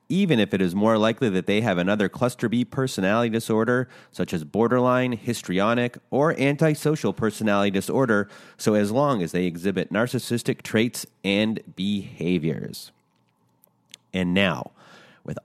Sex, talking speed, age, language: male, 135 wpm, 30-49, English